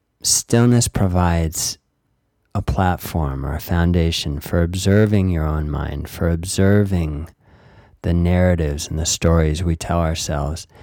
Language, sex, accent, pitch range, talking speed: English, male, American, 80-100 Hz, 120 wpm